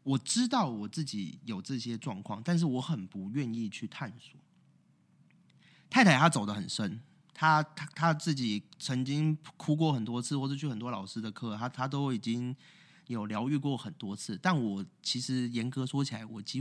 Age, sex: 30-49, male